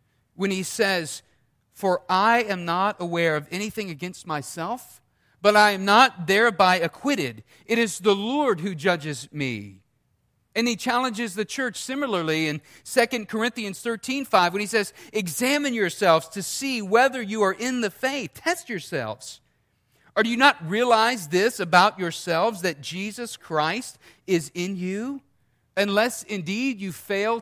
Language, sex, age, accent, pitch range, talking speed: English, male, 40-59, American, 140-220 Hz, 150 wpm